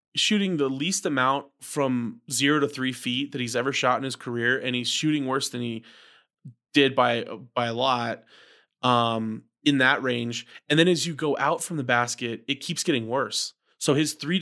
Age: 20-39